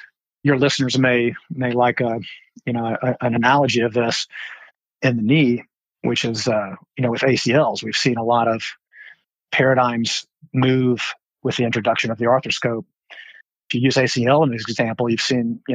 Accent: American